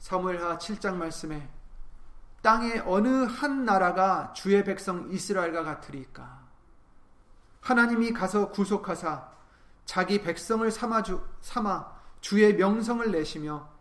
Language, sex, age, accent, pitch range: Korean, male, 30-49, native, 155-210 Hz